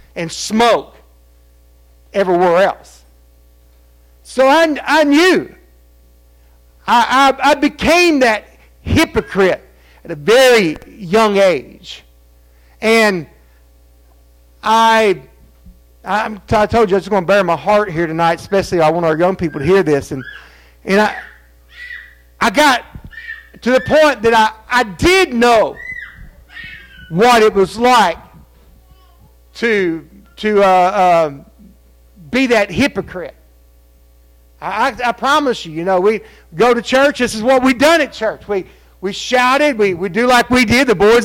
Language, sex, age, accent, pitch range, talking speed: English, male, 50-69, American, 155-245 Hz, 140 wpm